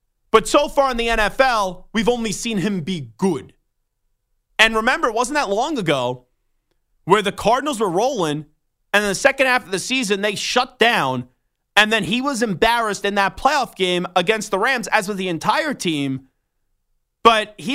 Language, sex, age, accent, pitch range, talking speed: English, male, 30-49, American, 165-225 Hz, 185 wpm